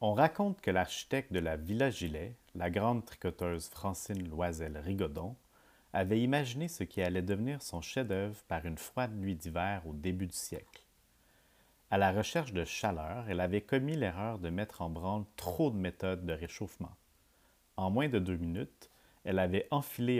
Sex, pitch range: male, 90-120 Hz